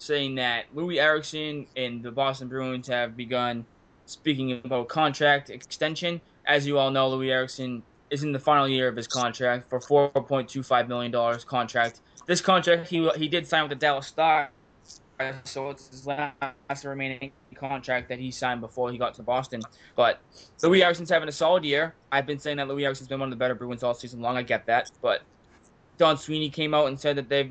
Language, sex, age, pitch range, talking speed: English, male, 20-39, 125-150 Hz, 200 wpm